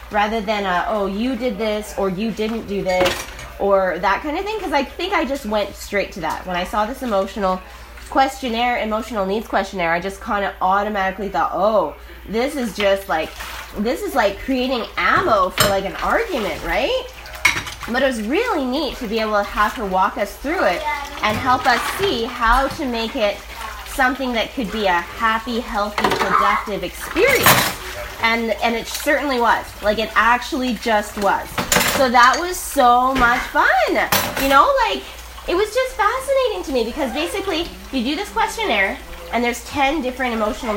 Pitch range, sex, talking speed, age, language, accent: 205-270 Hz, female, 180 wpm, 20-39, English, American